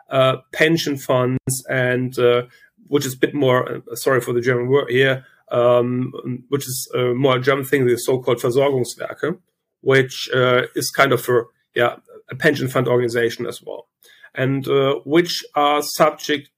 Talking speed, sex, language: 165 wpm, male, English